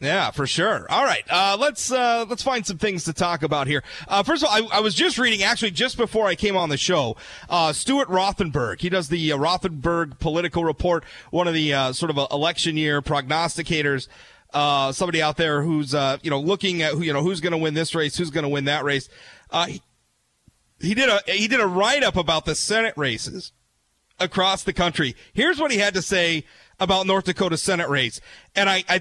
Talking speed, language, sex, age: 225 wpm, English, male, 30-49